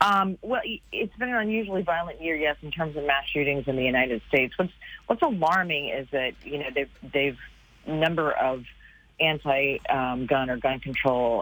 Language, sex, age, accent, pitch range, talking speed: English, female, 40-59, American, 120-140 Hz, 180 wpm